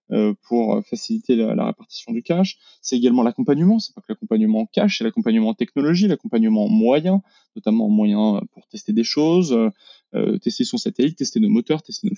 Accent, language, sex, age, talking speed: French, French, male, 20-39, 190 wpm